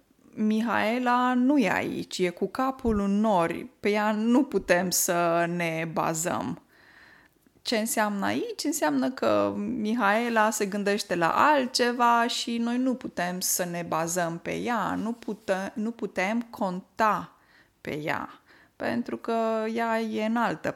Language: Romanian